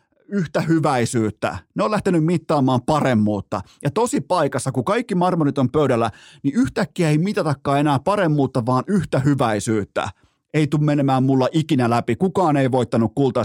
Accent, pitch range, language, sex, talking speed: native, 120-160 Hz, Finnish, male, 150 wpm